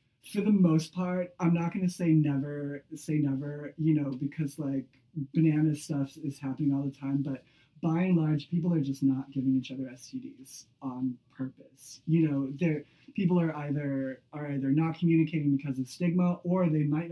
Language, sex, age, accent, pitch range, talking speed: English, male, 20-39, American, 135-160 Hz, 180 wpm